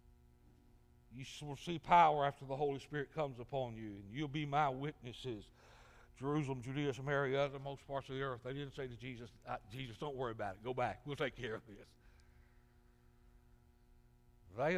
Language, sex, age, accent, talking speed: English, male, 60-79, American, 175 wpm